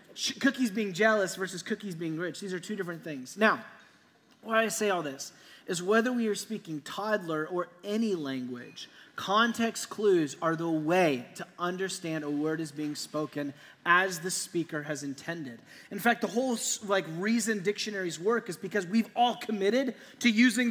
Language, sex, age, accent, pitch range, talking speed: English, male, 30-49, American, 160-215 Hz, 170 wpm